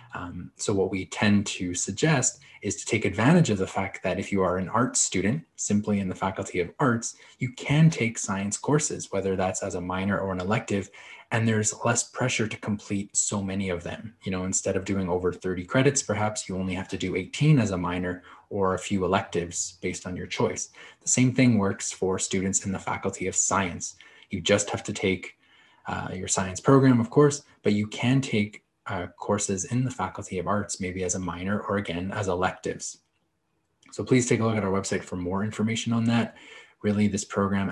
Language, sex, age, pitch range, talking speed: English, male, 20-39, 95-110 Hz, 210 wpm